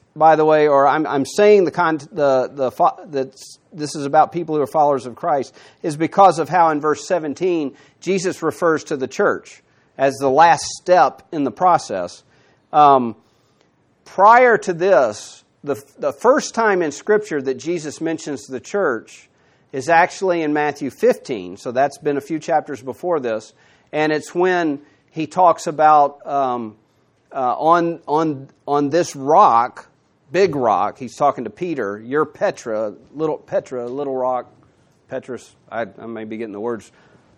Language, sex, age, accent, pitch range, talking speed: English, male, 40-59, American, 125-170 Hz, 160 wpm